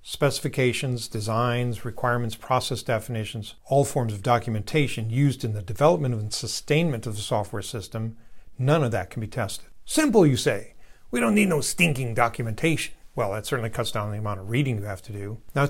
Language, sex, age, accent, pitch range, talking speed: English, male, 50-69, American, 115-140 Hz, 185 wpm